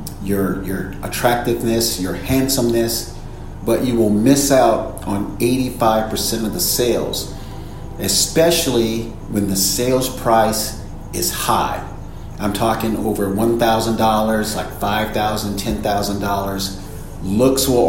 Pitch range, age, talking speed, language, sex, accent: 95-120 Hz, 40-59, 105 wpm, English, male, American